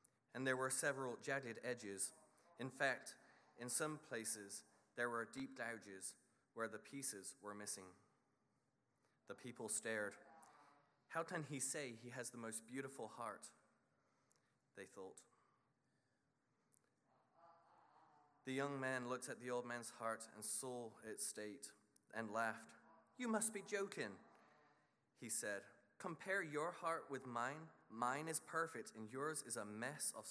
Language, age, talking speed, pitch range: English, 20-39, 140 wpm, 110-140 Hz